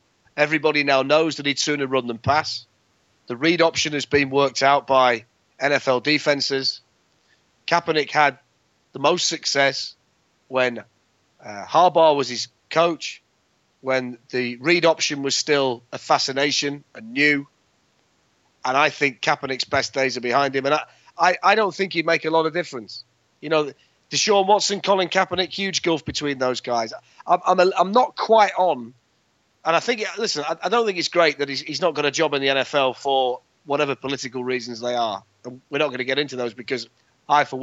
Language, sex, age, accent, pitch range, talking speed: English, male, 30-49, British, 125-155 Hz, 180 wpm